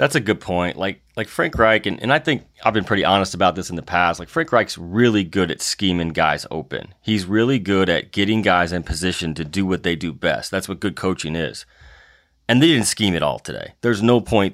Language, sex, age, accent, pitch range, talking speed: English, male, 30-49, American, 90-110 Hz, 245 wpm